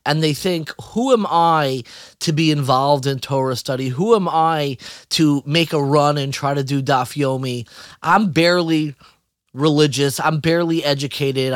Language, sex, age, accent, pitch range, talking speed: English, male, 30-49, American, 140-175 Hz, 155 wpm